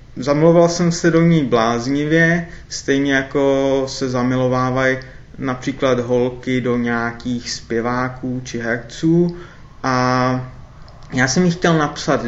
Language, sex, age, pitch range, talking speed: Czech, male, 20-39, 125-165 Hz, 110 wpm